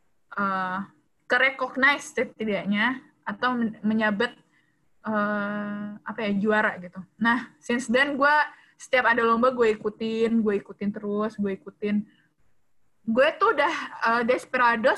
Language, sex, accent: Indonesian, female, native